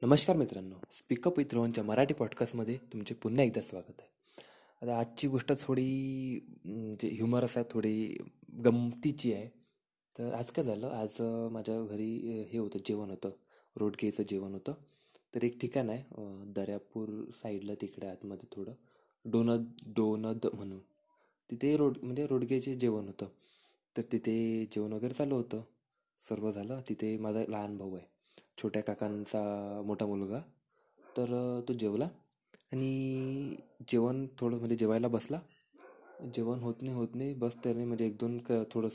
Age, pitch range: 20-39, 110-135 Hz